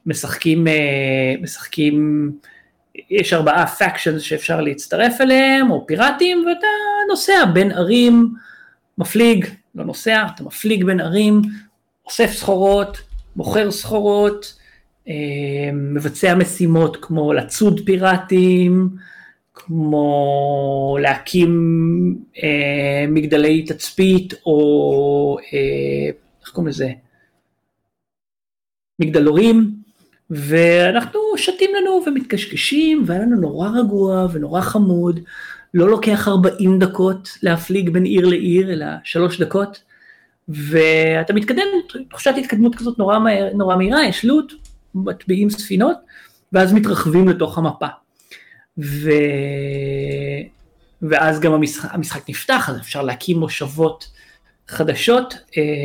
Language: Hebrew